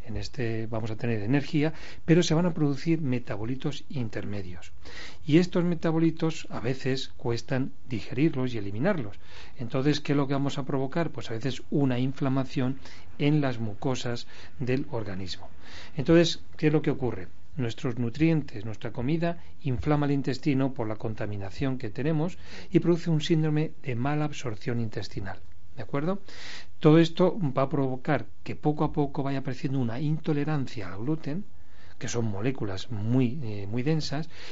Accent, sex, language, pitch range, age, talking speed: Spanish, male, Spanish, 115-150 Hz, 40-59, 155 wpm